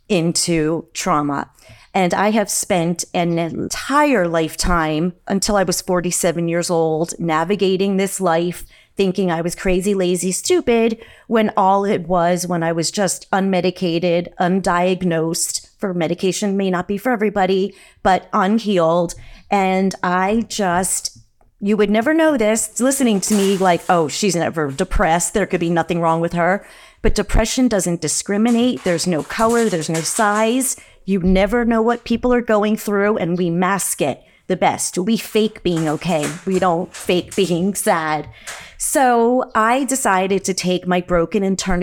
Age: 30-49